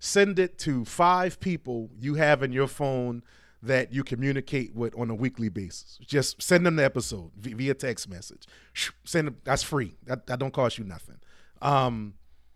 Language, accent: English, American